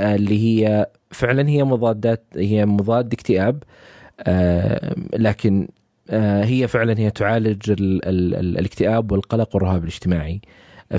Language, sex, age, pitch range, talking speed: Arabic, male, 20-39, 95-120 Hz, 120 wpm